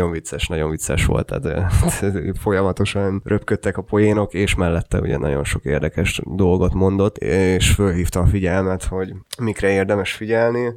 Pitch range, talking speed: 95-105 Hz, 140 wpm